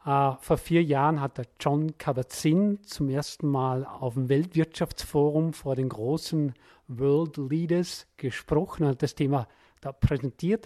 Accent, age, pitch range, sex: German, 40-59, 145-185 Hz, male